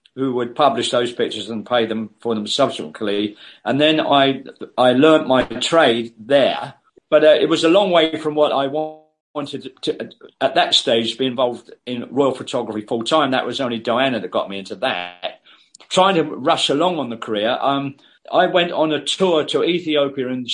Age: 40-59